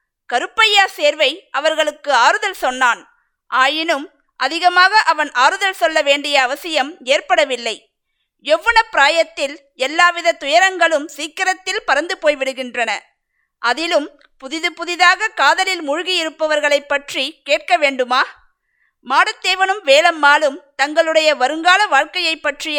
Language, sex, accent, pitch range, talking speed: Tamil, female, native, 285-360 Hz, 90 wpm